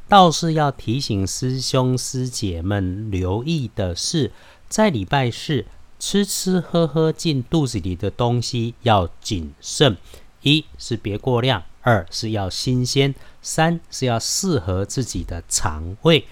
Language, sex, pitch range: Chinese, male, 105-145 Hz